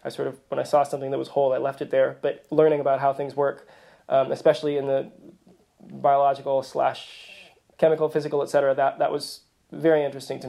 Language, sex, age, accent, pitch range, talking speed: English, male, 20-39, American, 140-160 Hz, 205 wpm